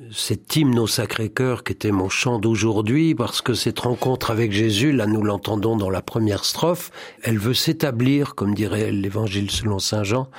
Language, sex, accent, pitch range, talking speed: French, male, French, 105-135 Hz, 180 wpm